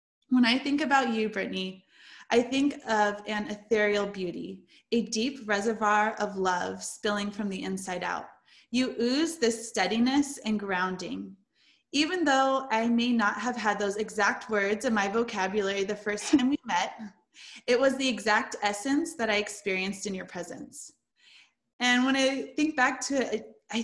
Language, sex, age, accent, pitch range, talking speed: English, female, 20-39, American, 205-260 Hz, 165 wpm